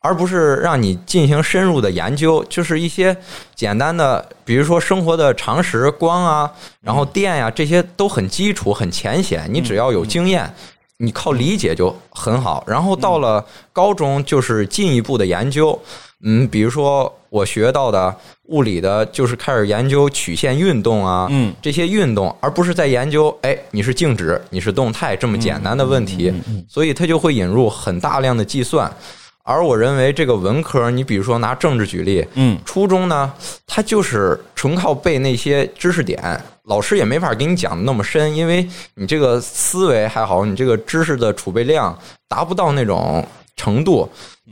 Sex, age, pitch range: male, 20-39, 110-165 Hz